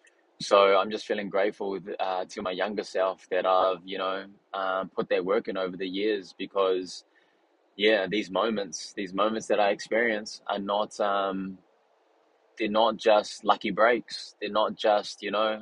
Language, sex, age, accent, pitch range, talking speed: English, male, 20-39, Australian, 95-105 Hz, 170 wpm